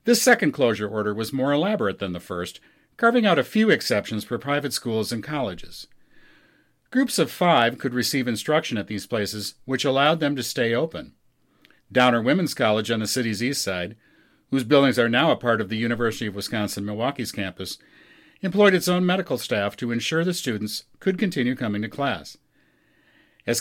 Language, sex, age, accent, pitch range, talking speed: English, male, 50-69, American, 105-140 Hz, 180 wpm